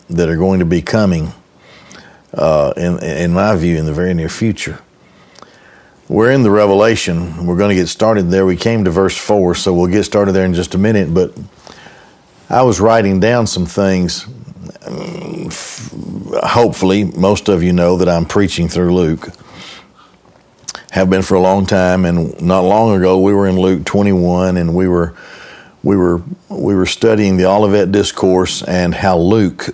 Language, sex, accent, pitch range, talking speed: English, male, American, 90-105 Hz, 175 wpm